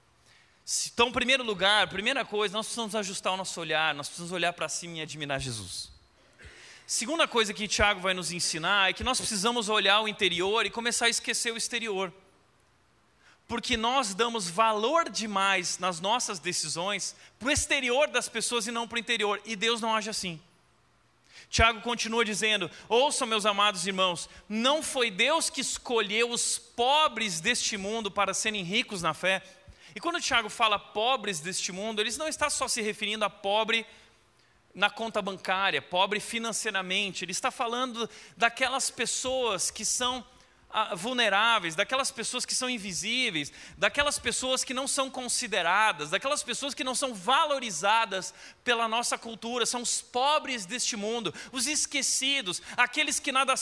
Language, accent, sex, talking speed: Portuguese, Brazilian, male, 160 wpm